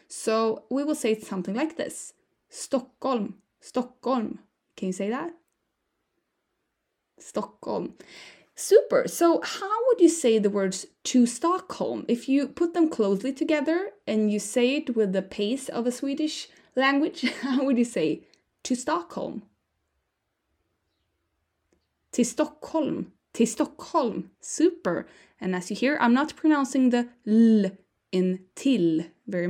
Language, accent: English, Norwegian